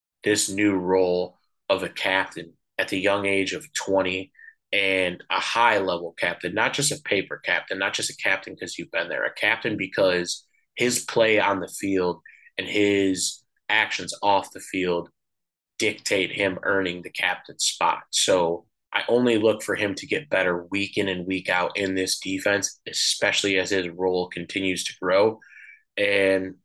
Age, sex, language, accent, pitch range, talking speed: 20-39, male, English, American, 95-115 Hz, 165 wpm